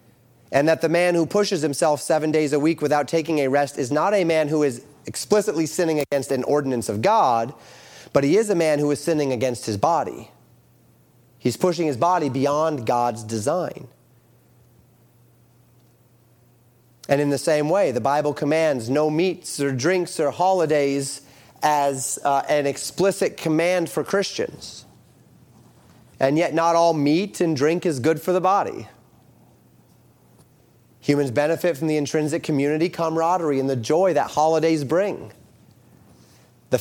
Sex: male